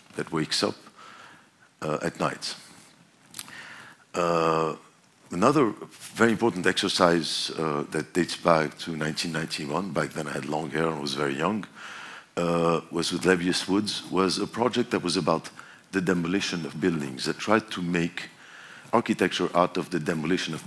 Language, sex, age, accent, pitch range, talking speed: German, male, 50-69, French, 80-95 Hz, 150 wpm